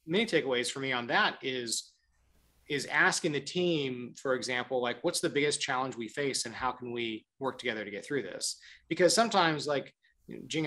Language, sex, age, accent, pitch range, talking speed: English, male, 30-49, American, 125-170 Hz, 190 wpm